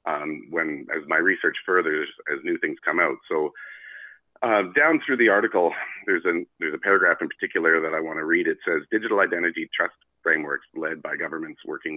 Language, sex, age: English, male, 40-59